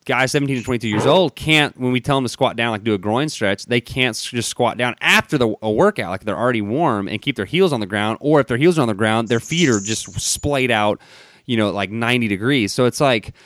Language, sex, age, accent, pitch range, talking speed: English, male, 30-49, American, 105-140 Hz, 275 wpm